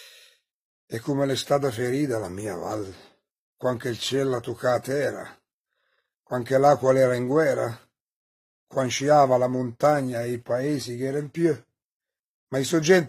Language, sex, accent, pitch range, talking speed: Italian, male, native, 130-155 Hz, 140 wpm